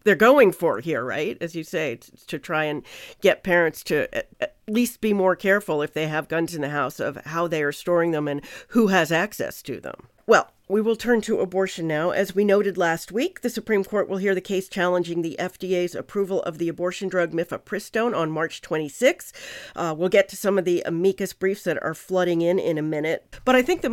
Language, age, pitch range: English, 50-69, 165-220 Hz